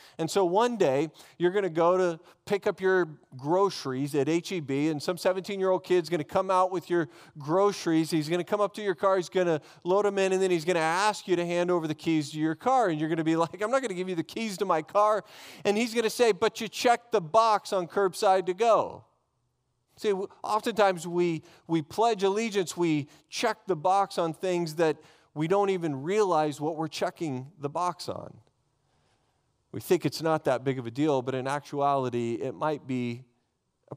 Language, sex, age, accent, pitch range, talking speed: English, male, 40-59, American, 155-195 Hz, 220 wpm